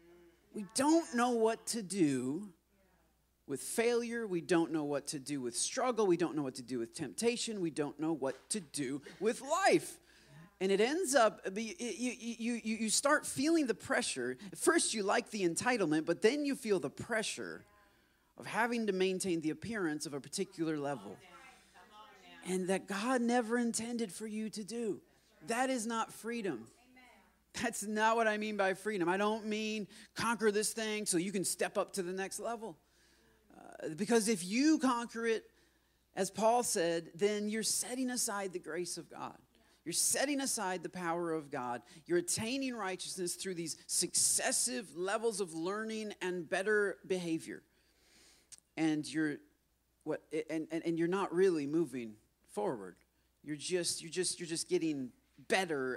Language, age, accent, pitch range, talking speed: English, 30-49, American, 170-230 Hz, 165 wpm